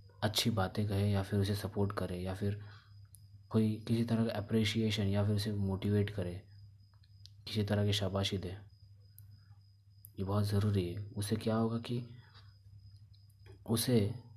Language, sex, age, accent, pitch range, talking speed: Hindi, male, 30-49, native, 100-105 Hz, 140 wpm